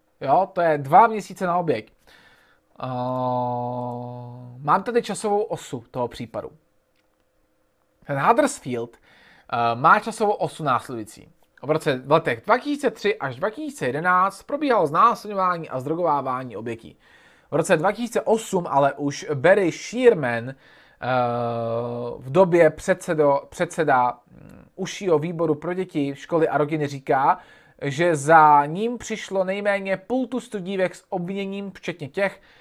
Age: 20-39